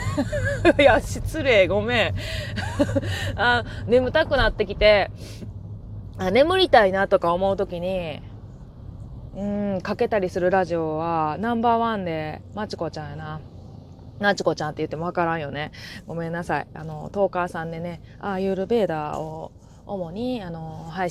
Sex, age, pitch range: female, 20-39, 150-215 Hz